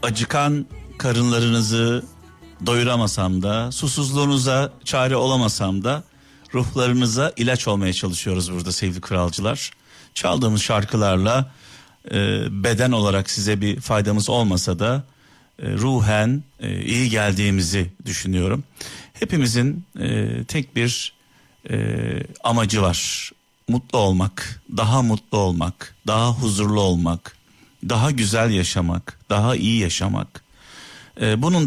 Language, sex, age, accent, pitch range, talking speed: Turkish, male, 50-69, native, 95-125 Hz, 100 wpm